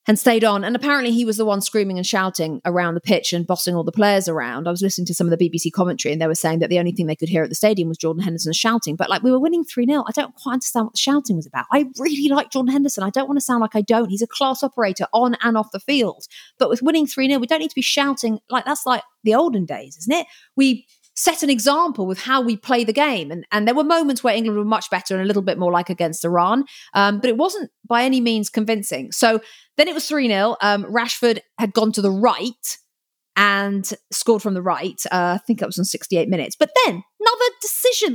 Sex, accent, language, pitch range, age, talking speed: female, British, English, 195-295 Hz, 30-49, 265 wpm